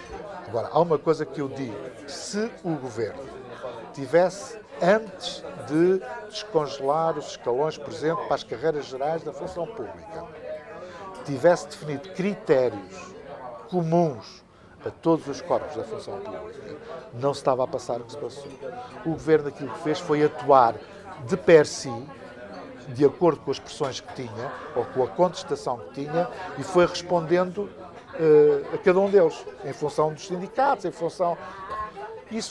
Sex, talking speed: male, 150 wpm